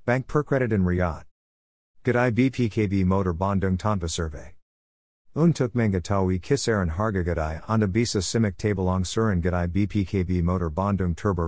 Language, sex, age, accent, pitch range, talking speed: Indonesian, male, 50-69, American, 85-110 Hz, 125 wpm